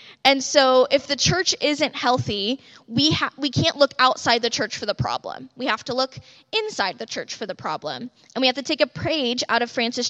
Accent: American